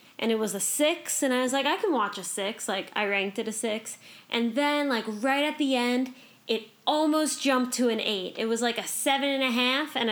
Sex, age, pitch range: female, 10-29, 215-270 Hz